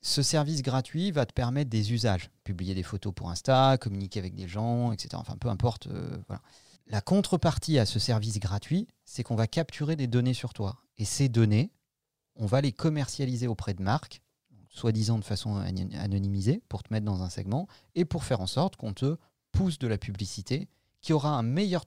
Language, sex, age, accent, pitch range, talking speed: French, male, 40-59, French, 110-145 Hz, 195 wpm